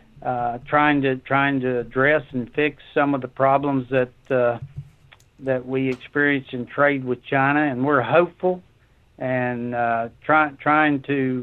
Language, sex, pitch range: English, male, 125-145 Hz